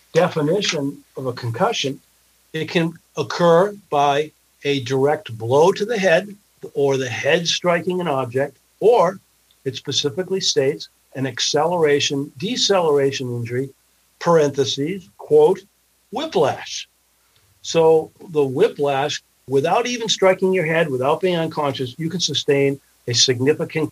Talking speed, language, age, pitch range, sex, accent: 120 wpm, English, 60-79, 125-160 Hz, male, American